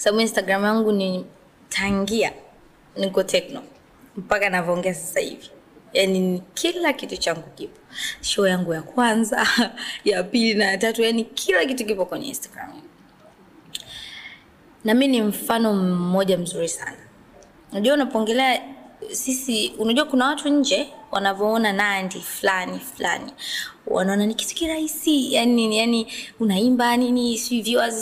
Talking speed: 130 wpm